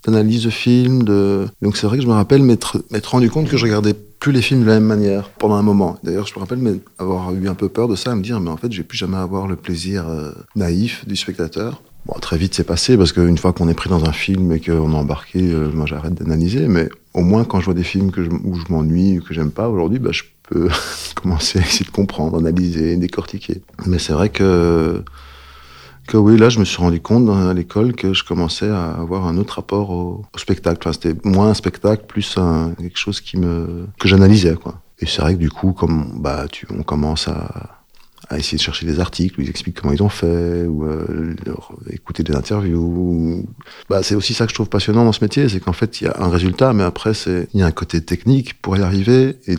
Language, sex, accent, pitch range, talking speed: French, male, French, 85-105 Hz, 250 wpm